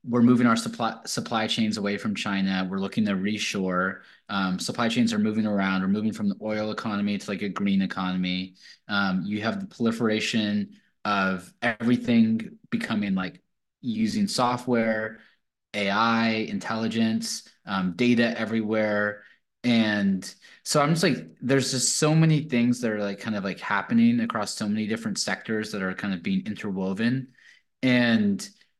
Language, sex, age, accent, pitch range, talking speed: English, male, 20-39, American, 105-145 Hz, 155 wpm